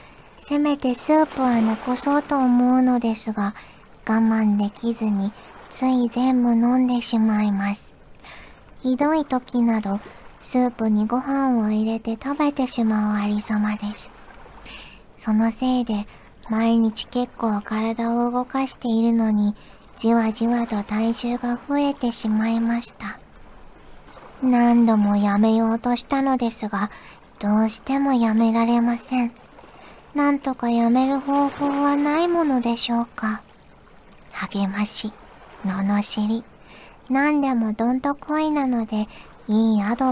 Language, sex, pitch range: Japanese, male, 215-250 Hz